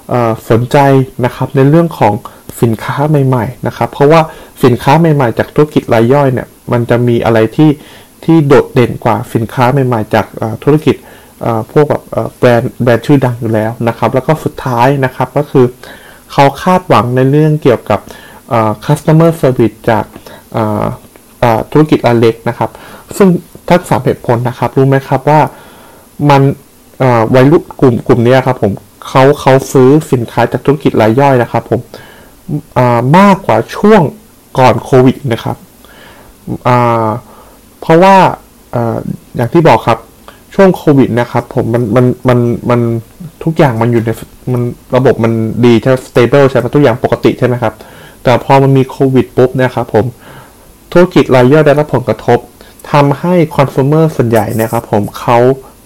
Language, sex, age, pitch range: Thai, male, 20-39, 115-145 Hz